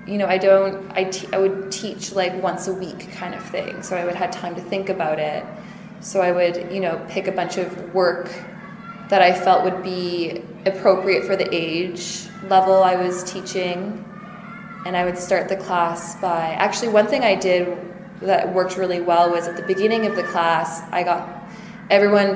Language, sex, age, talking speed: English, female, 20-39, 195 wpm